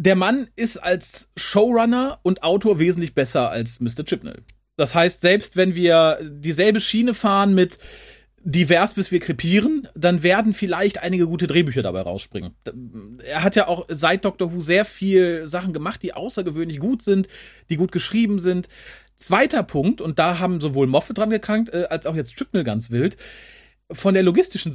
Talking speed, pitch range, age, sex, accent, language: 170 wpm, 150-200 Hz, 40-59, male, German, German